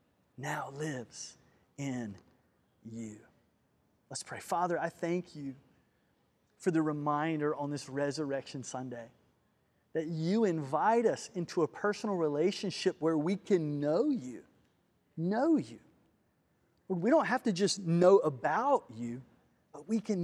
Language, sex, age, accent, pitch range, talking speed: English, male, 30-49, American, 140-185 Hz, 125 wpm